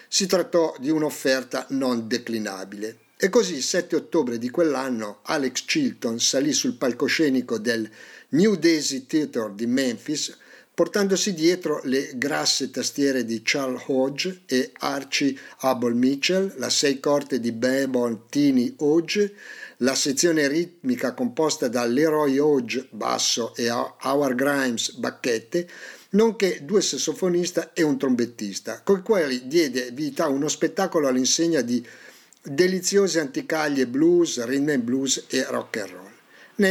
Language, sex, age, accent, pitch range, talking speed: Italian, male, 50-69, native, 125-170 Hz, 130 wpm